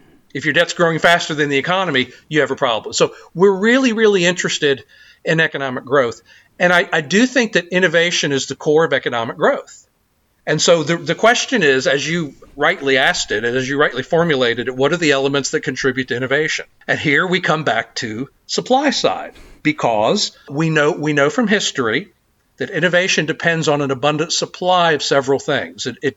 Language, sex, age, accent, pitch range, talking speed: English, male, 50-69, American, 140-170 Hz, 195 wpm